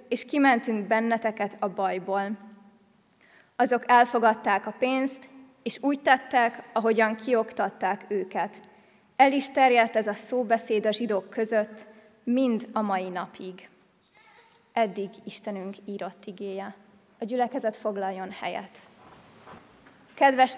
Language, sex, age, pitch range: Hungarian, female, 20-39, 205-250 Hz